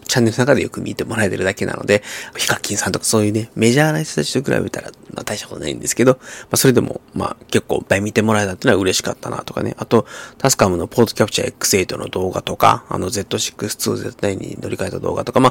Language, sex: Japanese, male